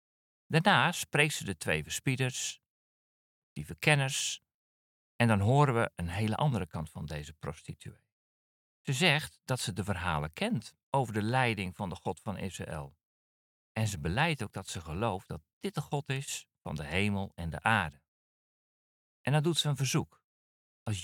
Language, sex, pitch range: Dutch, male, 85-140 Hz